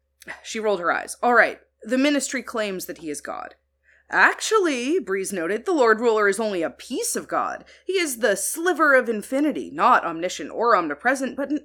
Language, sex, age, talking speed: English, female, 30-49, 190 wpm